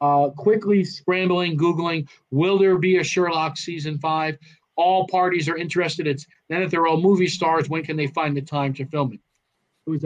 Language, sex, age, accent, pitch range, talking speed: English, male, 40-59, American, 140-170 Hz, 195 wpm